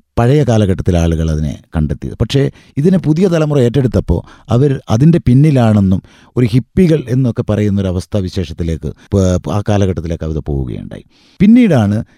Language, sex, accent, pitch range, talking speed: Malayalam, male, native, 80-115 Hz, 110 wpm